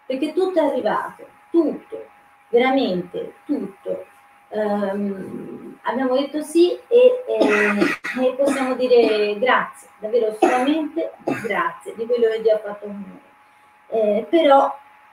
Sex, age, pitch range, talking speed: female, 30-49, 205-275 Hz, 120 wpm